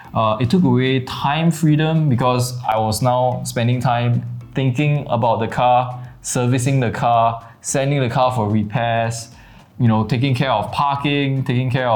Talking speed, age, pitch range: 160 wpm, 20-39, 115-150 Hz